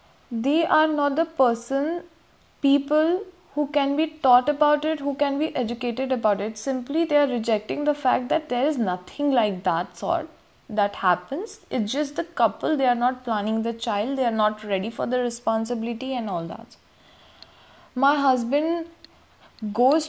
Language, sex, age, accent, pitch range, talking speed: English, female, 10-29, Indian, 220-280 Hz, 165 wpm